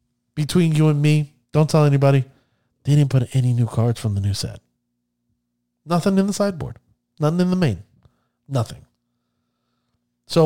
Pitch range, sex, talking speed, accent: 125-170 Hz, male, 155 wpm, American